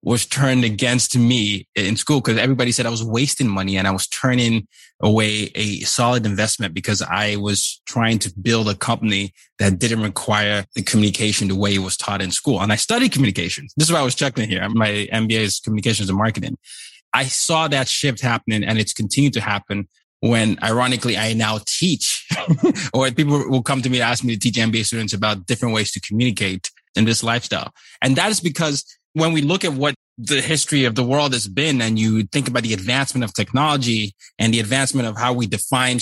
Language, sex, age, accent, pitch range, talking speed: English, male, 20-39, American, 105-140 Hz, 210 wpm